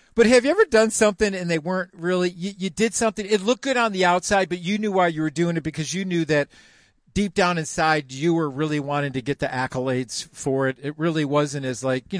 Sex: male